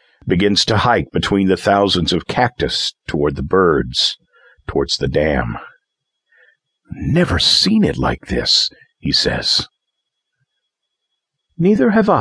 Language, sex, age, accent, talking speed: English, male, 50-69, American, 115 wpm